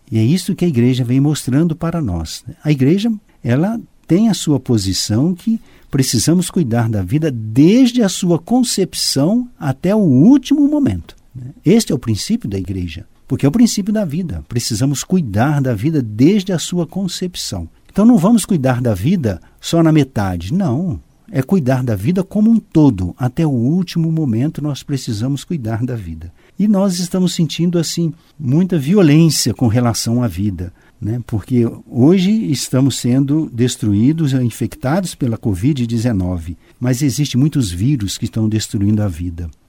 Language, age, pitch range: Portuguese, 60-79, 115-175 Hz